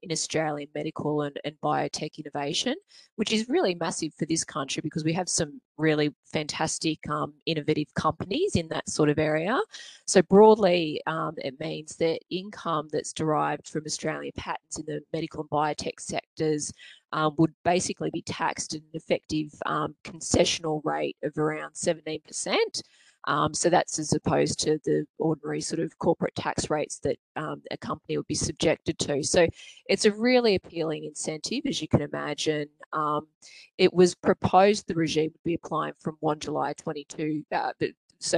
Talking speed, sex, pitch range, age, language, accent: 165 wpm, female, 155-175 Hz, 20-39, English, Australian